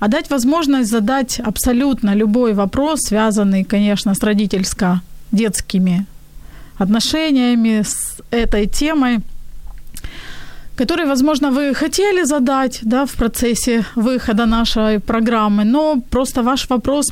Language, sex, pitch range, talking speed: Ukrainian, female, 210-260 Hz, 100 wpm